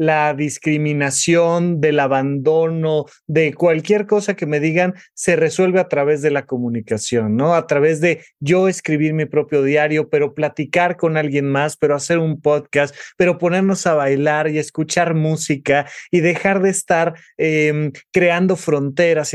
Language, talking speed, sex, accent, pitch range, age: Spanish, 150 wpm, male, Mexican, 140-175 Hz, 30-49